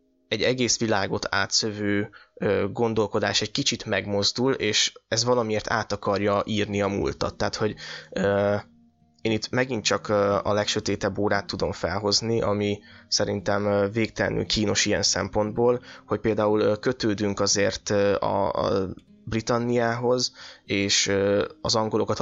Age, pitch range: 20-39, 100-120 Hz